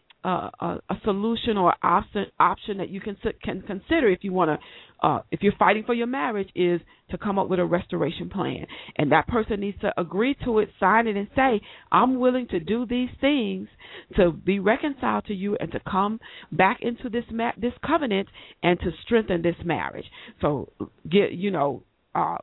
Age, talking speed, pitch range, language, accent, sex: 50-69, 195 wpm, 185-235 Hz, English, American, female